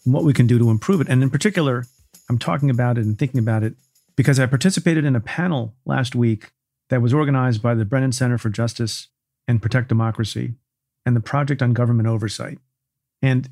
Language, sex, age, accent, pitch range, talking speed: English, male, 40-59, American, 115-135 Hz, 205 wpm